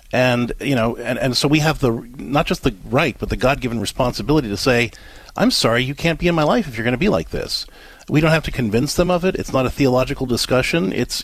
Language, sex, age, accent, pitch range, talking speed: English, male, 50-69, American, 105-140 Hz, 255 wpm